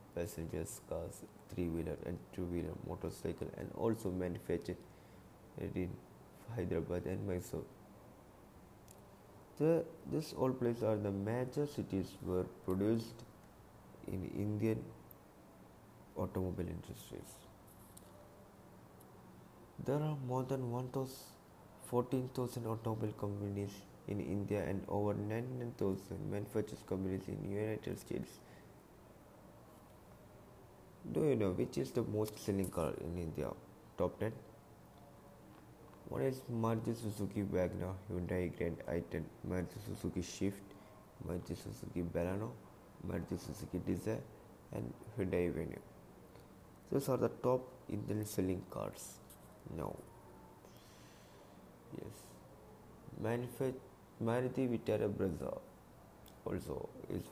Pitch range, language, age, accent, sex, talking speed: 90-115 Hz, English, 20-39, Indian, male, 95 wpm